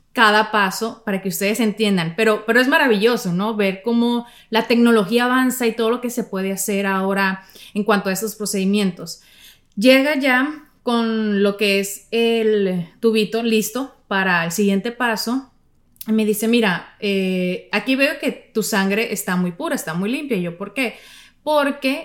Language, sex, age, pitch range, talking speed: Spanish, female, 30-49, 200-250 Hz, 170 wpm